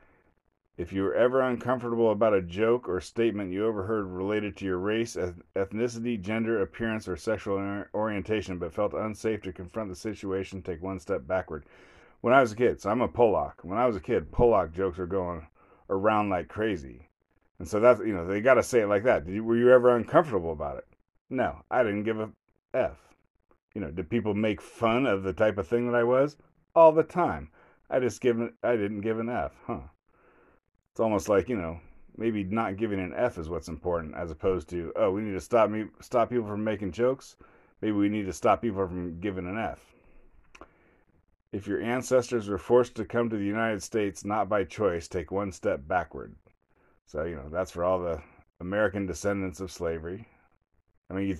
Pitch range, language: 95-115 Hz, English